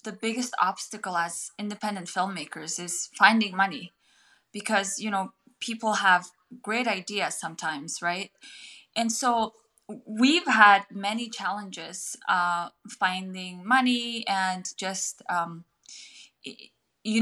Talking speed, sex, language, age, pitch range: 110 wpm, female, English, 20-39, 185-225 Hz